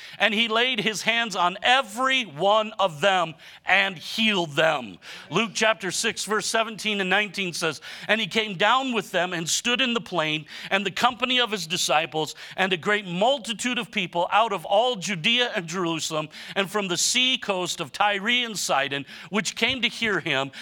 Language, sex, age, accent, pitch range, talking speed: English, male, 50-69, American, 175-220 Hz, 185 wpm